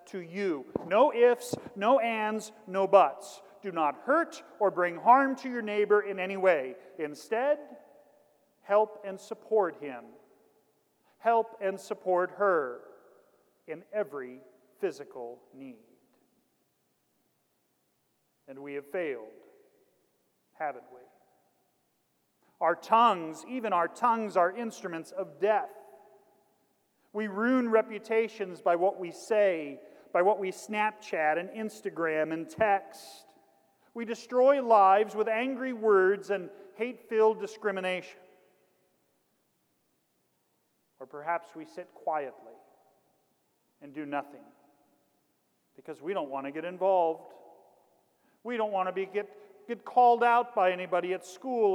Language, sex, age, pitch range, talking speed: English, male, 40-59, 170-225 Hz, 115 wpm